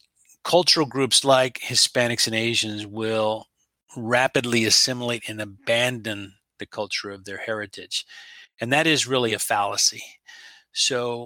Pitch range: 115-145 Hz